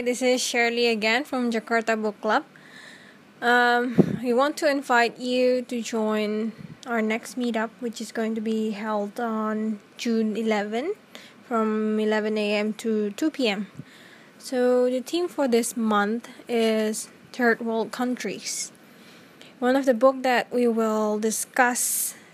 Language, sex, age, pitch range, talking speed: English, female, 20-39, 220-255 Hz, 135 wpm